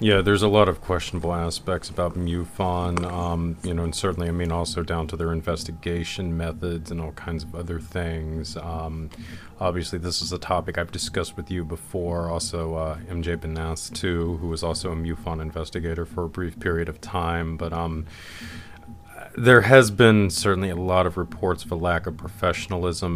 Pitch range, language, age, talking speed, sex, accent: 80-90 Hz, English, 30-49, 185 wpm, male, American